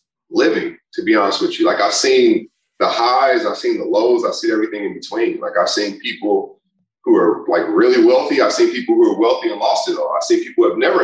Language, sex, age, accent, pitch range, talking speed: English, male, 30-49, American, 335-385 Hz, 245 wpm